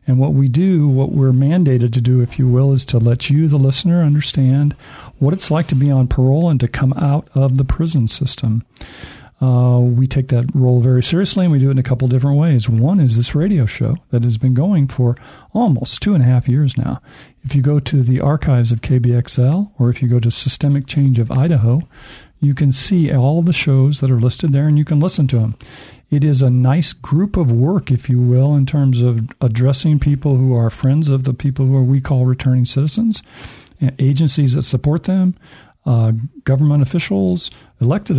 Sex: male